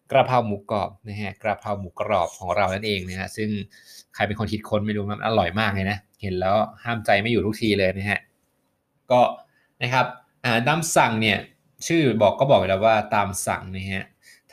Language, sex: Thai, male